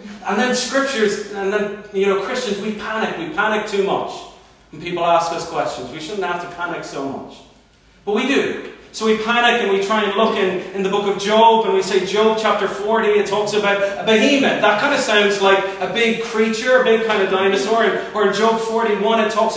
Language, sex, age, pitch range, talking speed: English, male, 30-49, 200-265 Hz, 225 wpm